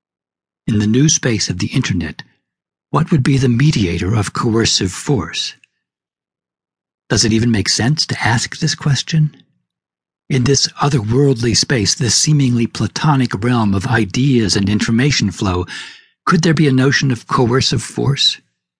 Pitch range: 105-130 Hz